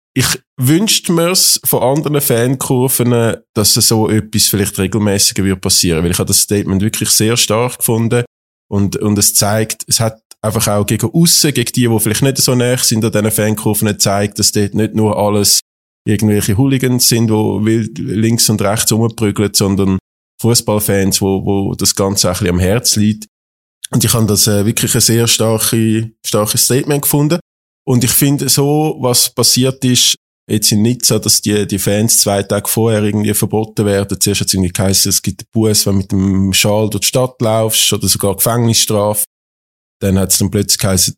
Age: 20-39